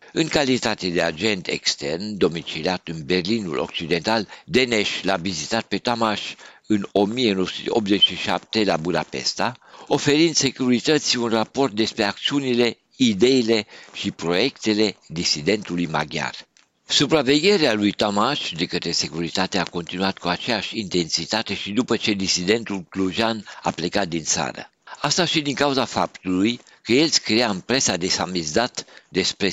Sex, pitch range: male, 90-120 Hz